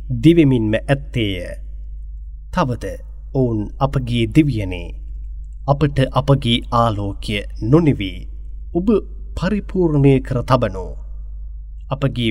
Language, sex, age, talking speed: English, male, 30-49, 85 wpm